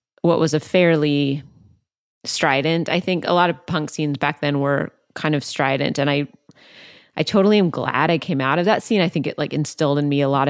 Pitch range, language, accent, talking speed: 145-170 Hz, English, American, 225 wpm